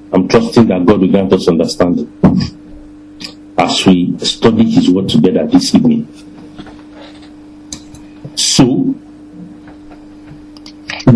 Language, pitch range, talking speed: English, 100-155 Hz, 95 wpm